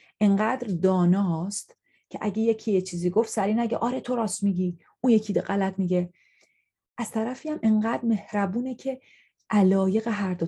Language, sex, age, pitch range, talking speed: Persian, female, 30-49, 185-240 Hz, 155 wpm